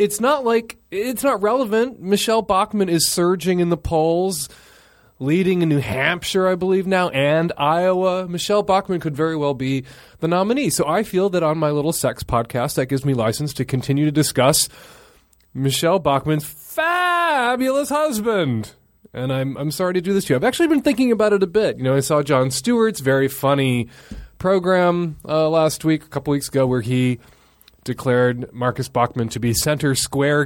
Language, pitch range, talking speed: English, 130-195 Hz, 185 wpm